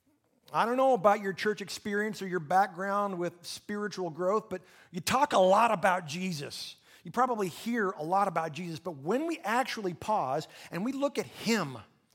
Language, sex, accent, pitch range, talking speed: English, male, American, 180-245 Hz, 185 wpm